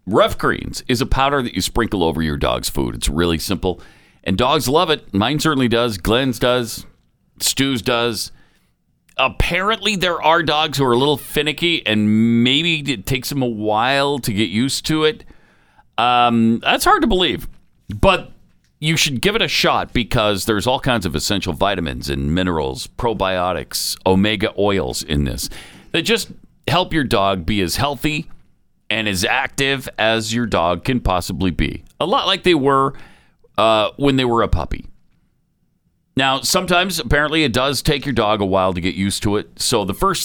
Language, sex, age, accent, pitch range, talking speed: English, male, 50-69, American, 95-140 Hz, 175 wpm